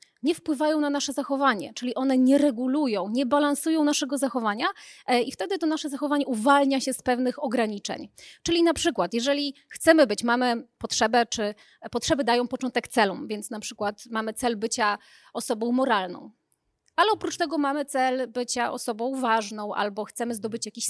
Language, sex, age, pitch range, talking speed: Polish, female, 30-49, 235-300 Hz, 160 wpm